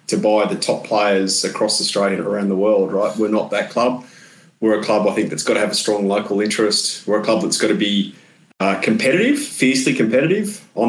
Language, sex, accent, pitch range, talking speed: English, male, Australian, 105-115 Hz, 225 wpm